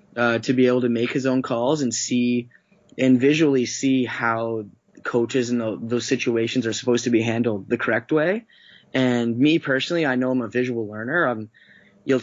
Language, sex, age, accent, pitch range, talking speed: English, male, 10-29, American, 115-130 Hz, 190 wpm